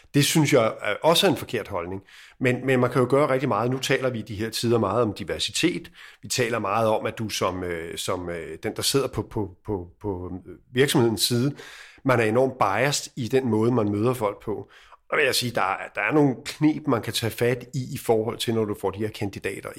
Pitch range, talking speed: 110-135 Hz, 235 wpm